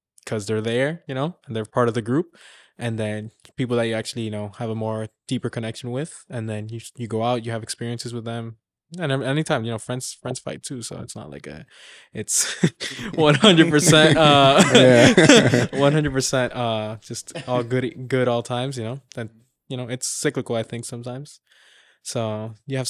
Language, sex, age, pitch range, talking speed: English, male, 20-39, 115-130 Hz, 190 wpm